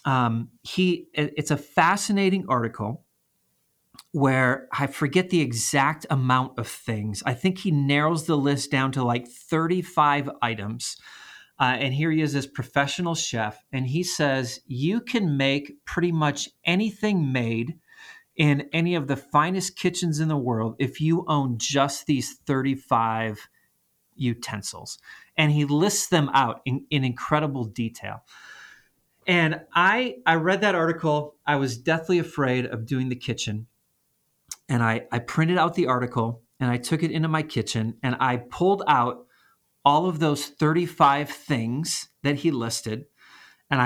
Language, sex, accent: English, male, American